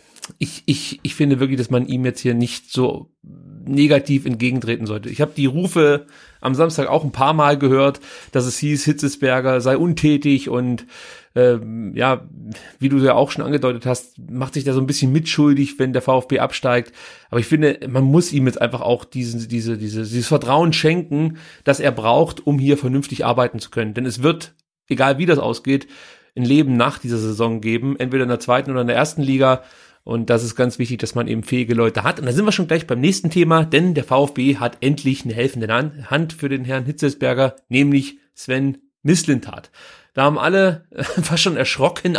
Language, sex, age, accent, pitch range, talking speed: German, male, 30-49, German, 125-150 Hz, 200 wpm